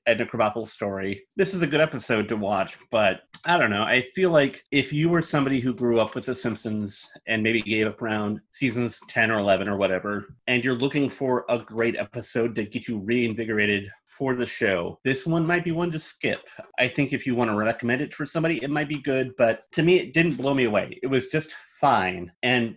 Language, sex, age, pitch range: English, male, 30-49, 110-135 Hz